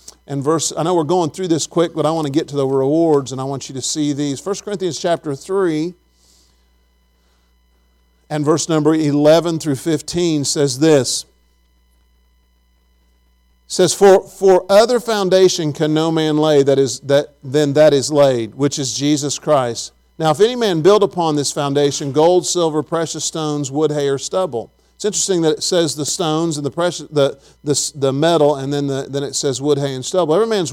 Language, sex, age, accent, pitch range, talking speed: English, male, 50-69, American, 135-165 Hz, 185 wpm